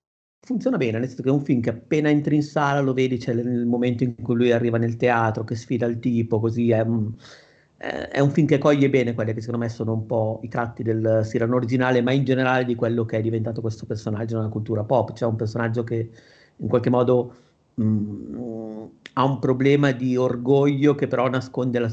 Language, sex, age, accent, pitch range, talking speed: Italian, male, 40-59, native, 110-125 Hz, 210 wpm